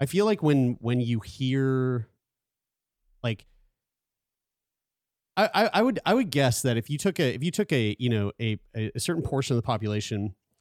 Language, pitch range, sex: English, 110-140 Hz, male